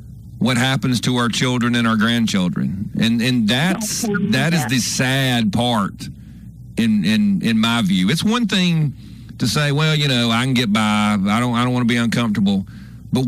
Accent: American